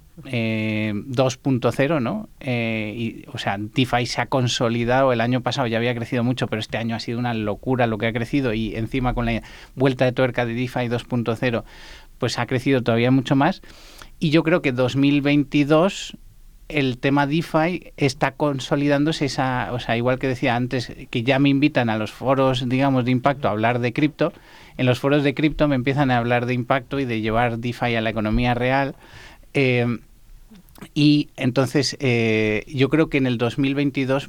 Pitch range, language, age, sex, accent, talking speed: 115-140 Hz, Spanish, 30-49, male, Spanish, 185 wpm